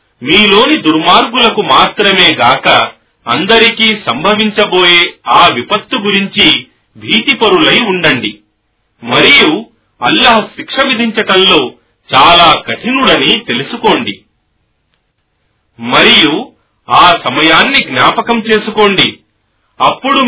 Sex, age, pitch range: male, 40-59, 160-235 Hz